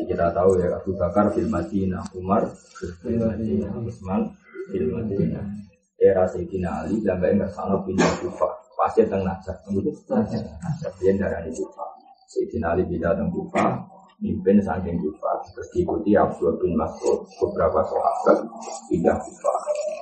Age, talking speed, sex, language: 30-49, 125 wpm, male, Indonesian